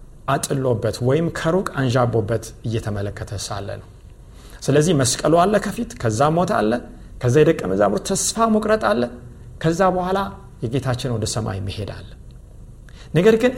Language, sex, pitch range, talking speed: Amharic, male, 120-165 Hz, 115 wpm